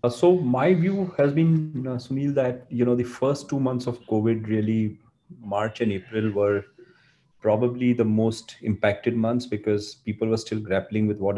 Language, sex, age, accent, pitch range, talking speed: English, male, 30-49, Indian, 105-130 Hz, 180 wpm